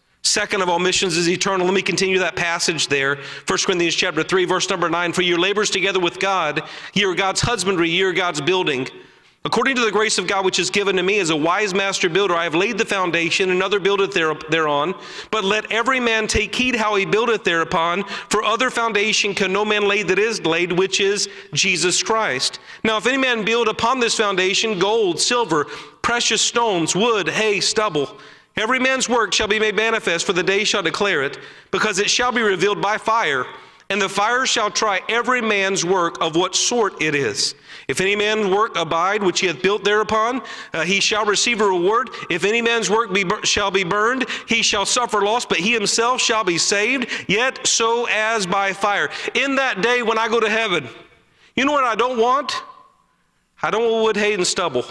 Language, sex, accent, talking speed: English, male, American, 205 wpm